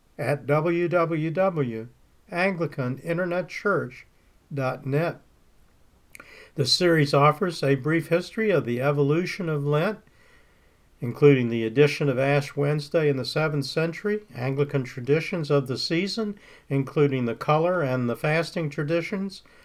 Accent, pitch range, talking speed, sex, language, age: American, 130-170 Hz, 105 wpm, male, English, 50-69